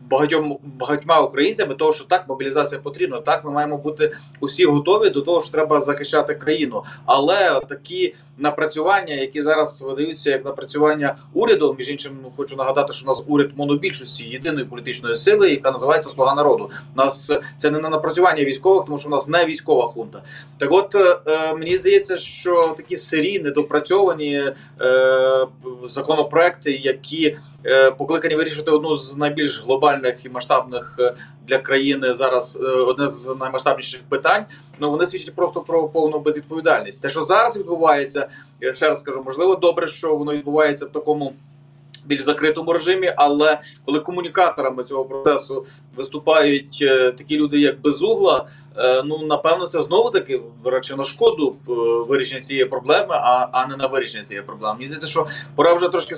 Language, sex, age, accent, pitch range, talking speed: Ukrainian, male, 20-39, native, 140-165 Hz, 155 wpm